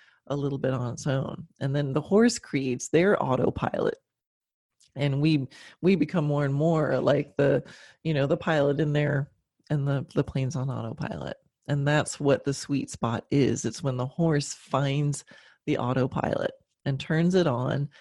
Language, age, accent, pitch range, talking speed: English, 30-49, American, 140-180 Hz, 175 wpm